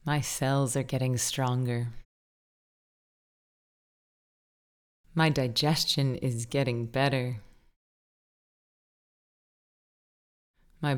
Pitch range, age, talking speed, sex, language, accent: 120-150 Hz, 30-49, 60 wpm, female, English, American